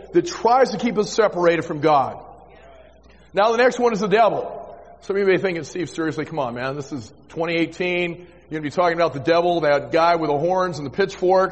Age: 40-59